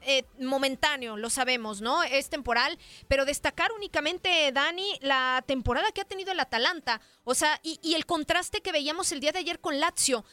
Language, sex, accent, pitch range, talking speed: Spanish, female, Mexican, 245-320 Hz, 185 wpm